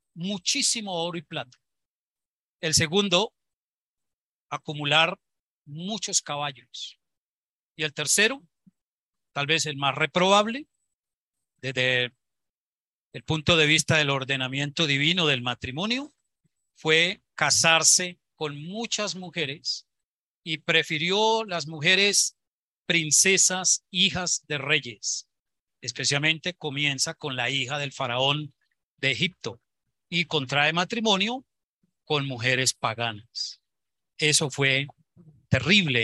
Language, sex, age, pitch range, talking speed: Spanish, male, 40-59, 135-175 Hz, 95 wpm